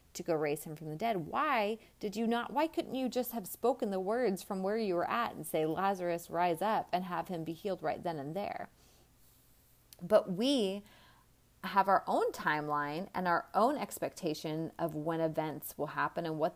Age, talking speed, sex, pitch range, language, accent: 30-49, 200 wpm, female, 160-215 Hz, English, American